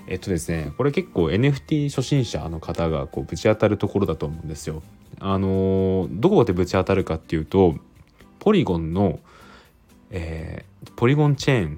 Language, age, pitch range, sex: Japanese, 20-39, 85-115 Hz, male